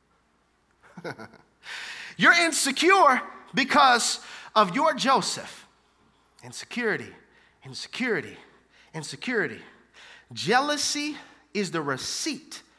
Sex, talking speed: male, 60 wpm